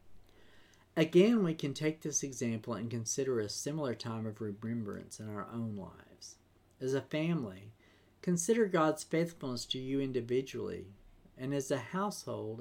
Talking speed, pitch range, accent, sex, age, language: 145 wpm, 105-160 Hz, American, male, 50-69, English